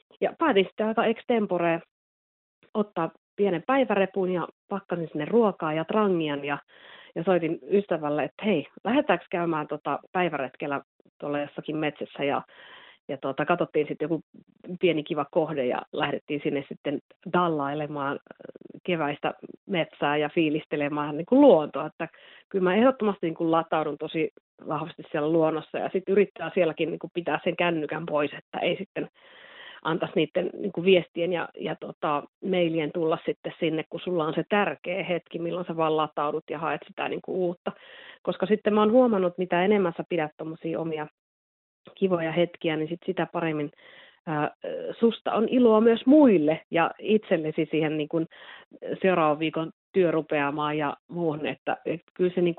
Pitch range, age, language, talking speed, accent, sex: 155-190 Hz, 30-49, Finnish, 150 wpm, native, female